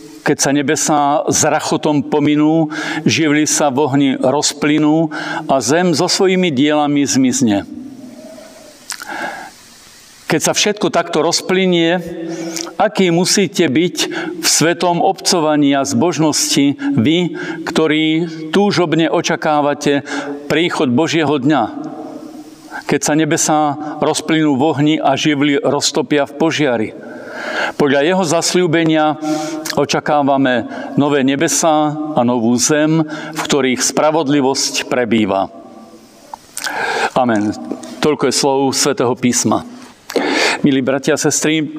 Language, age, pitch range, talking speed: Slovak, 50-69, 140-170 Hz, 100 wpm